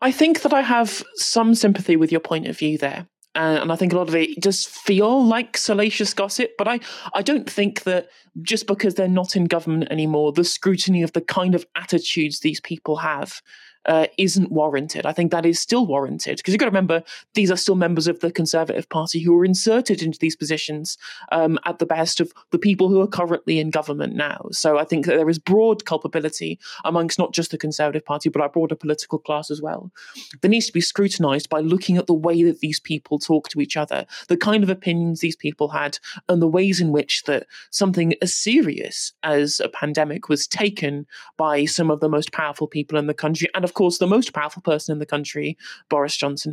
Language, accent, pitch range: English, British, 155-195 Hz